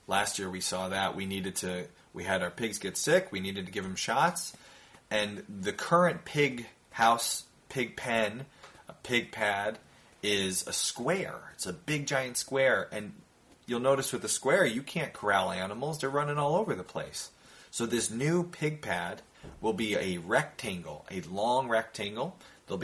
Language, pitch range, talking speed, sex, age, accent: English, 95-125 Hz, 175 wpm, male, 30-49, American